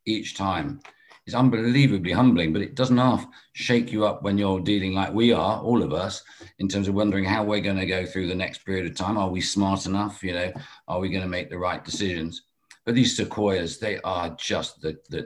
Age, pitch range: 50-69, 90-115 Hz